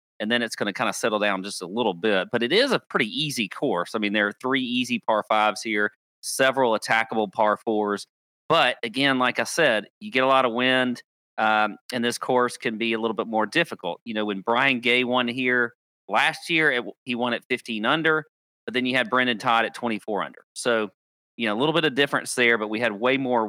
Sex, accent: male, American